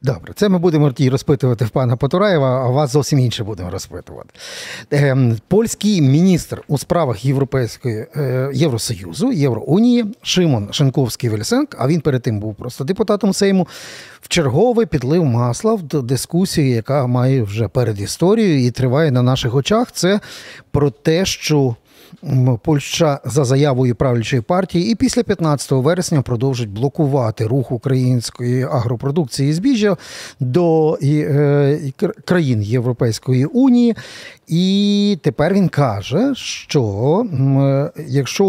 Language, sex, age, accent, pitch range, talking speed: Ukrainian, male, 40-59, native, 125-170 Hz, 125 wpm